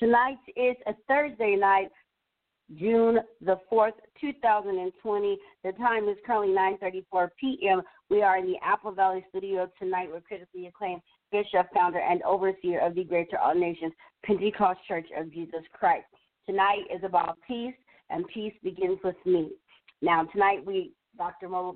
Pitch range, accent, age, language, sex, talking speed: 185-230 Hz, American, 40-59, English, female, 150 wpm